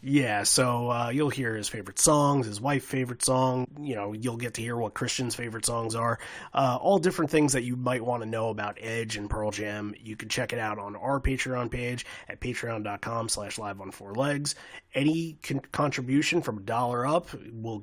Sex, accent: male, American